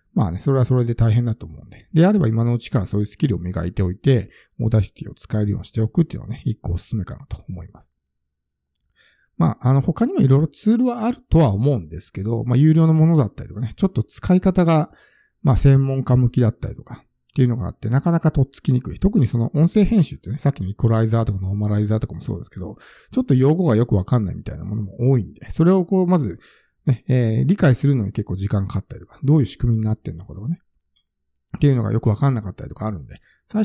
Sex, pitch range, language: male, 110-155 Hz, Japanese